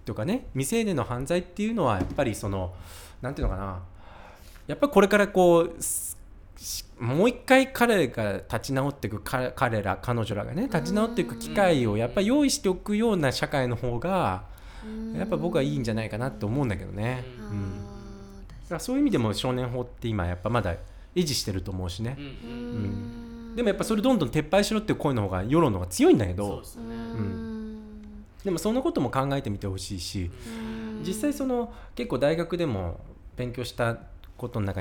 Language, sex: Japanese, male